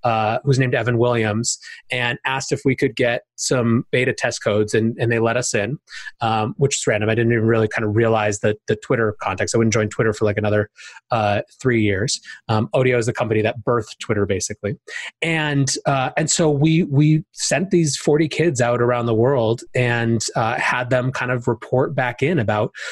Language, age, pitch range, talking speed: English, 30-49, 115-140 Hz, 205 wpm